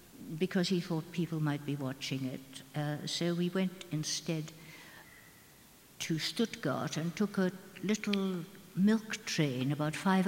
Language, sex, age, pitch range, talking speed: English, female, 60-79, 140-180 Hz, 135 wpm